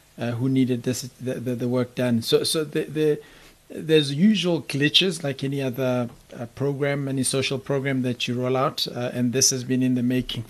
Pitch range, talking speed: 120-140 Hz, 205 wpm